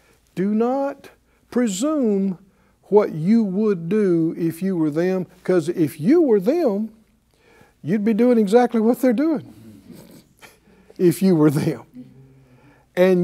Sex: male